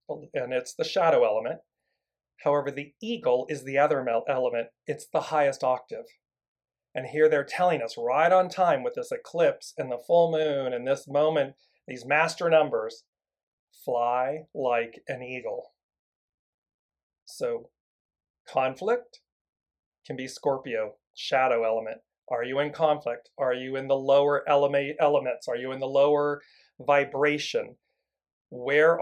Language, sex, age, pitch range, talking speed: English, male, 40-59, 130-160 Hz, 135 wpm